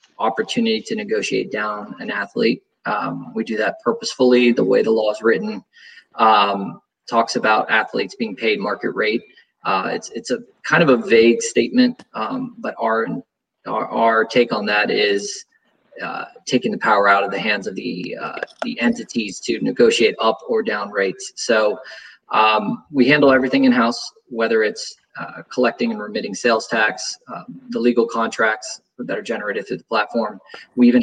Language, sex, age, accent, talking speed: English, male, 20-39, American, 170 wpm